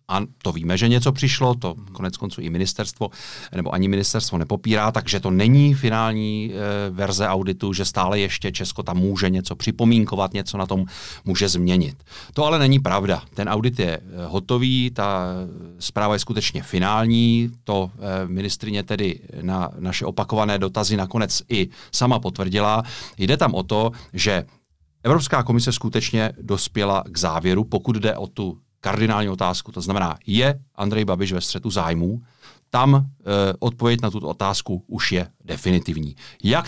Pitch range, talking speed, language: 90-110 Hz, 150 wpm, Czech